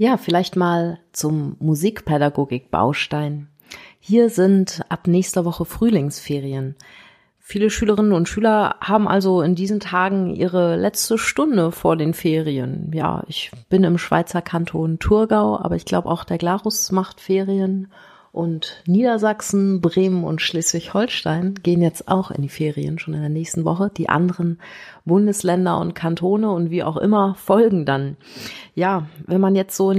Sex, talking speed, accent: female, 150 wpm, German